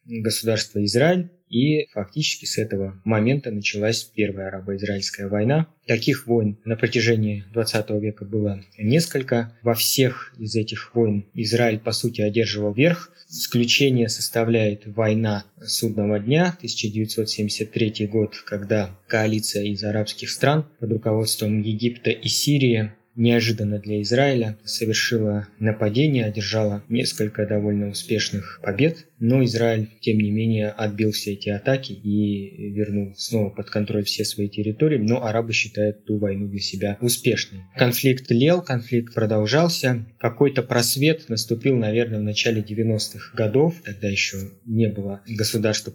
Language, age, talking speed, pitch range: Russian, 20-39, 130 wpm, 105-120 Hz